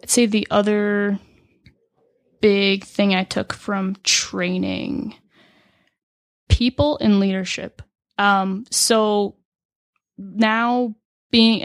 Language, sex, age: English, female, 20-39